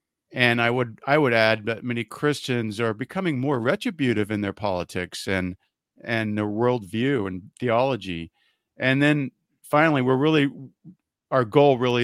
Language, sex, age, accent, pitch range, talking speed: English, male, 50-69, American, 110-135 Hz, 150 wpm